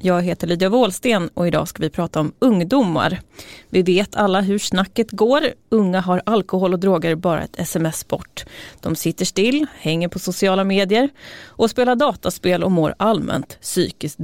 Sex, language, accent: female, Swedish, native